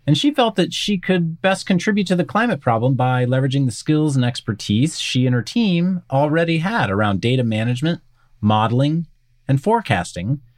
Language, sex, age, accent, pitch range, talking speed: English, male, 30-49, American, 125-185 Hz, 170 wpm